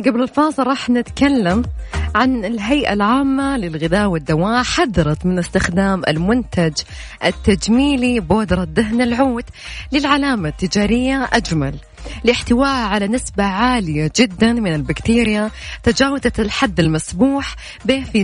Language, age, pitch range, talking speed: Arabic, 20-39, 175-255 Hz, 105 wpm